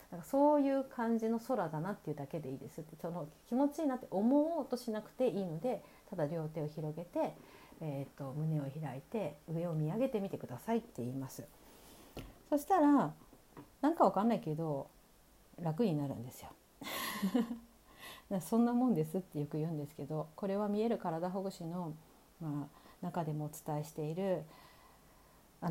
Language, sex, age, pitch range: Japanese, female, 50-69, 150-215 Hz